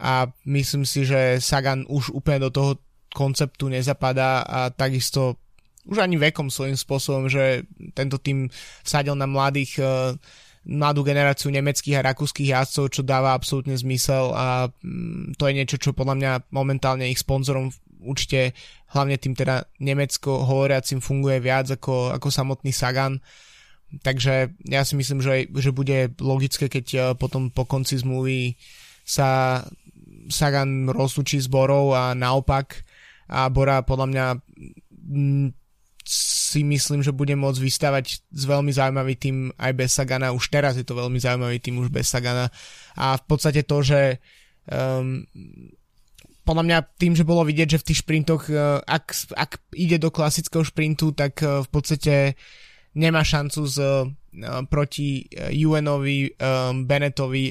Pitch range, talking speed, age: 130-145 Hz, 140 wpm, 20-39